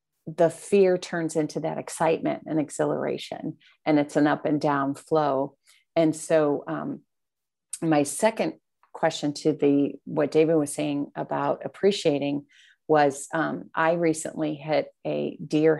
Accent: American